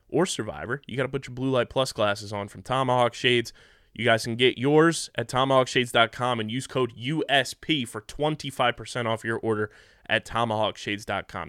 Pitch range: 110-135 Hz